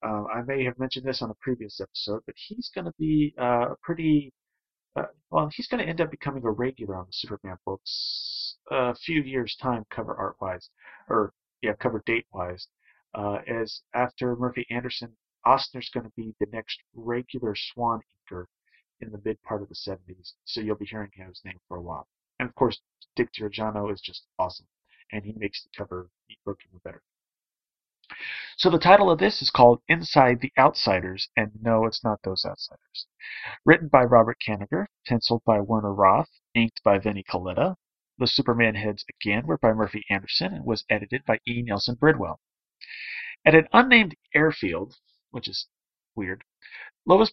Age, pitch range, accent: 30-49, 105-145 Hz, American